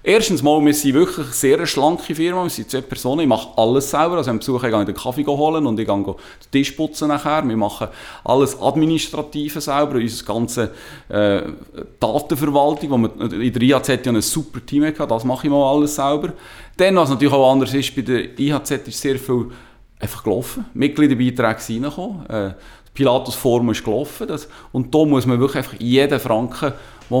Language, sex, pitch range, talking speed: German, male, 125-160 Hz, 195 wpm